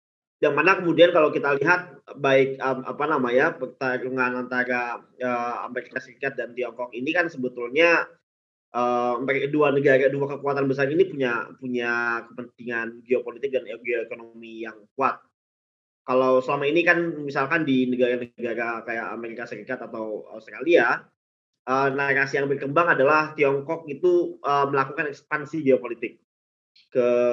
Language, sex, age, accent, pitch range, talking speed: Indonesian, male, 20-39, native, 120-140 Hz, 130 wpm